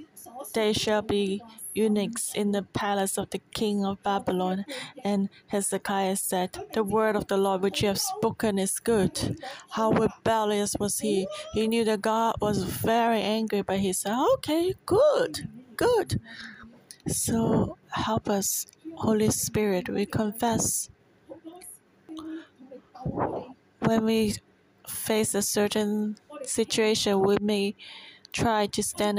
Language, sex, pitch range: Chinese, female, 195-230 Hz